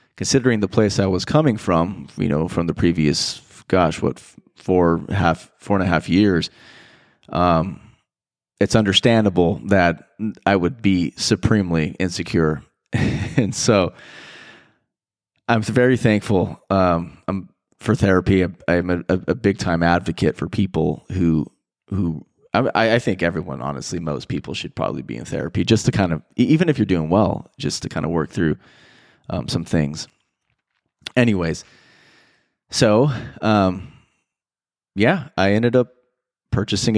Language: English